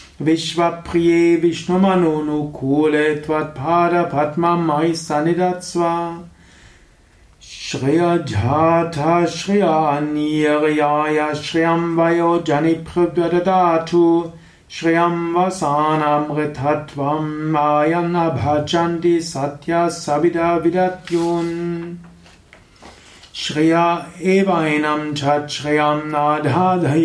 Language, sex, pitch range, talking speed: German, male, 150-170 Hz, 30 wpm